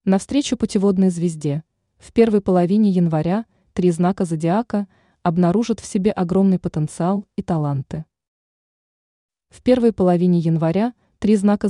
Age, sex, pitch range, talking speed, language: 20-39, female, 165-215 Hz, 120 wpm, Russian